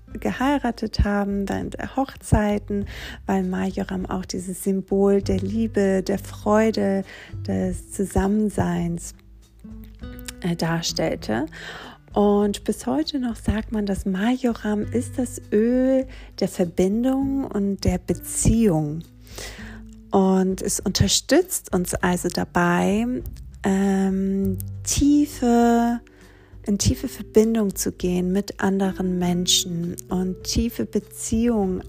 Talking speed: 95 wpm